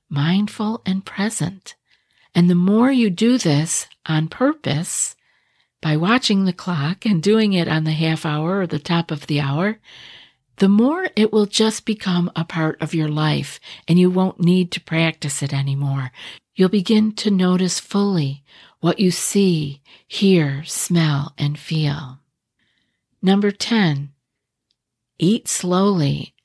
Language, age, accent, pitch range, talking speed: English, 50-69, American, 155-205 Hz, 145 wpm